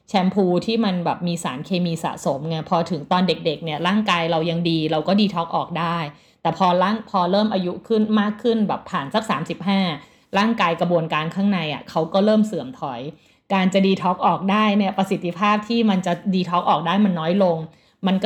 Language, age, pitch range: Thai, 20-39, 165-200 Hz